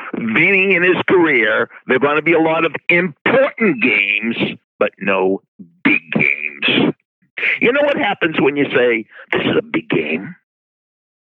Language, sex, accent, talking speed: English, male, American, 160 wpm